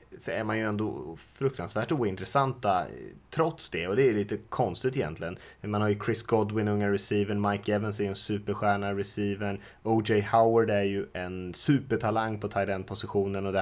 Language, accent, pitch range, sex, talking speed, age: Swedish, Norwegian, 95-110 Hz, male, 170 wpm, 20-39